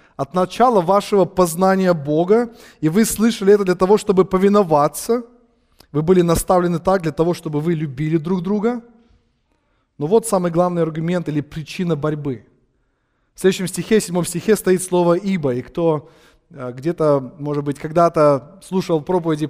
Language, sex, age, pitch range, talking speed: English, male, 20-39, 155-195 Hz, 150 wpm